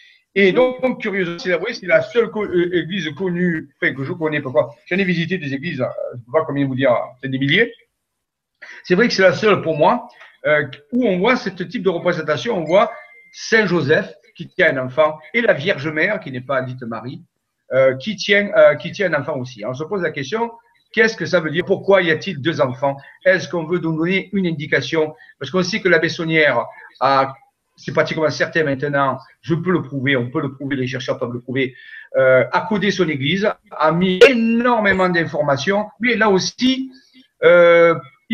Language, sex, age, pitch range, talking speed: French, male, 50-69, 155-215 Hz, 210 wpm